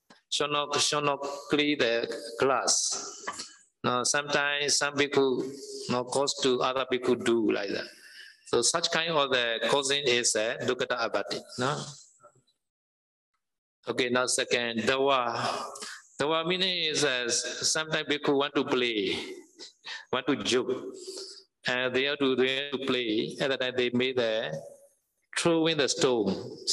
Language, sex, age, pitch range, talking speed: Vietnamese, male, 50-69, 125-195 Hz, 155 wpm